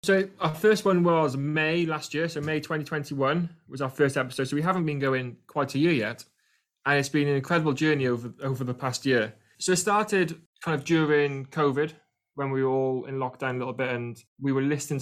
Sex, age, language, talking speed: male, 20-39, English, 220 wpm